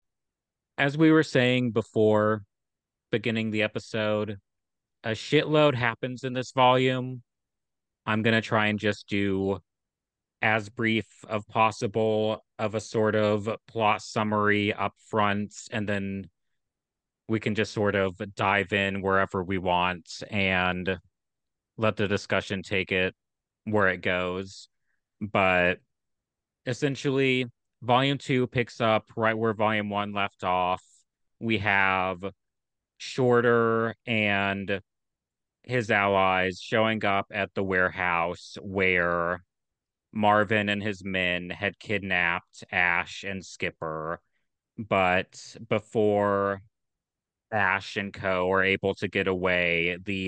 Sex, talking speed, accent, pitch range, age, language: male, 115 wpm, American, 95-110 Hz, 30-49, English